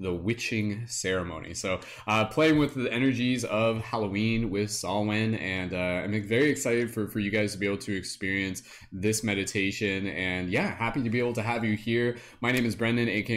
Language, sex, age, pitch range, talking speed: English, male, 20-39, 100-120 Hz, 195 wpm